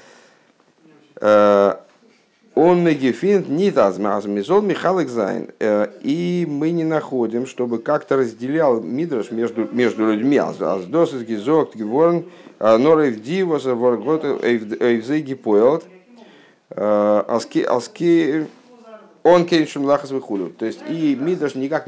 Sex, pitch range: male, 100-150 Hz